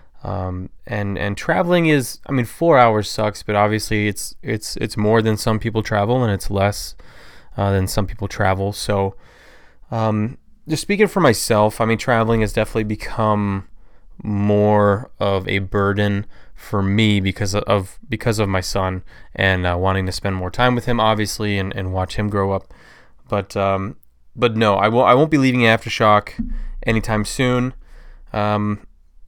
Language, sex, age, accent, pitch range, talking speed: English, male, 20-39, American, 95-115 Hz, 170 wpm